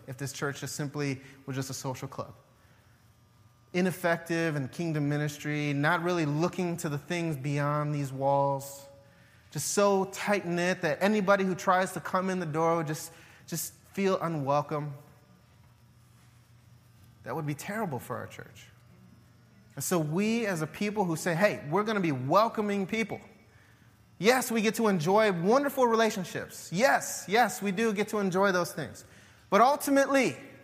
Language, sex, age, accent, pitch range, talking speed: English, male, 30-49, American, 135-205 Hz, 155 wpm